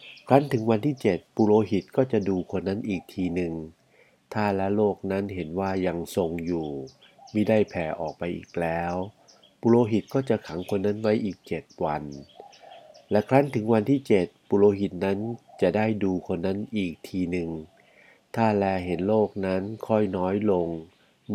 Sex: male